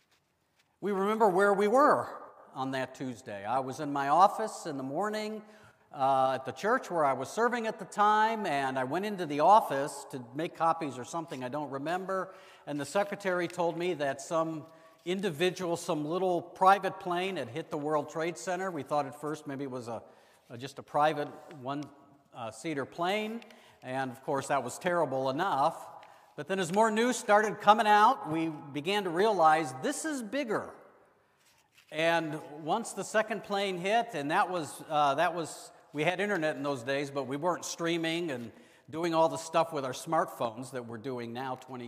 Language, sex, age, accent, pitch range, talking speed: English, male, 50-69, American, 135-180 Hz, 190 wpm